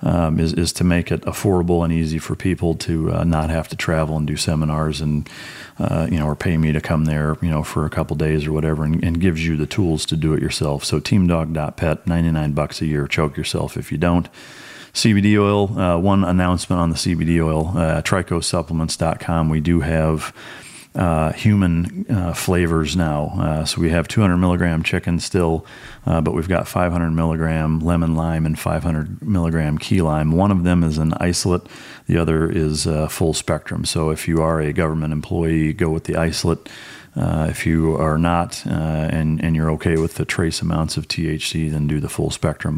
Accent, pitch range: American, 75-85 Hz